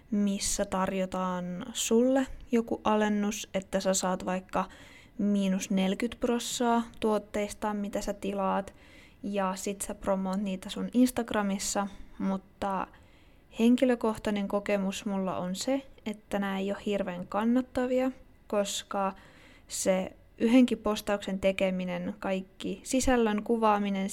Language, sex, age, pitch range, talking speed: Finnish, female, 20-39, 190-215 Hz, 105 wpm